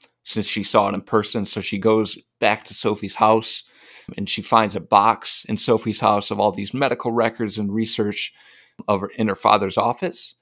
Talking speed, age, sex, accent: 190 wpm, 30-49, male, American